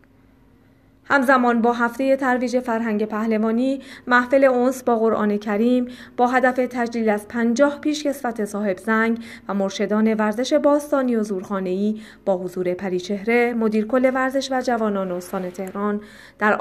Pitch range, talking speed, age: 205-255 Hz, 130 wpm, 30-49